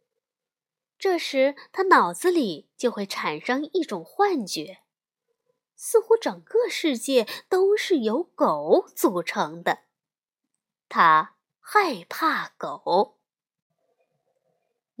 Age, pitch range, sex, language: 20-39, 225-375 Hz, female, Chinese